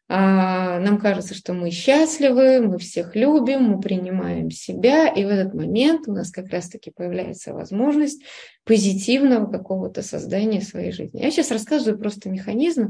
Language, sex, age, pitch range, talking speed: Russian, female, 20-39, 185-235 Hz, 145 wpm